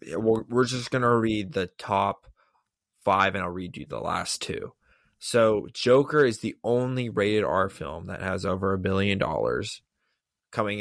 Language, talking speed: English, 165 wpm